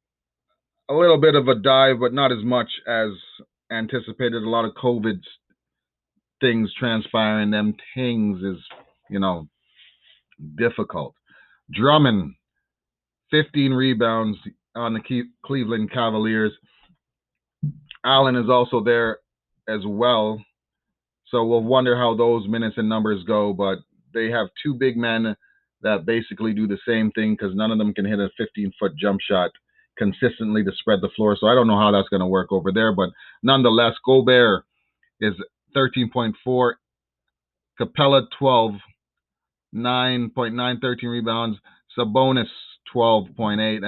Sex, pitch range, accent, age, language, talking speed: male, 105-130 Hz, American, 30-49, English, 130 wpm